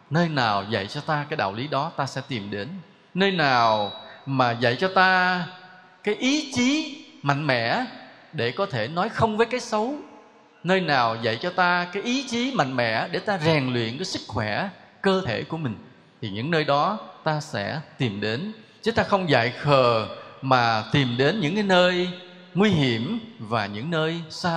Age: 20-39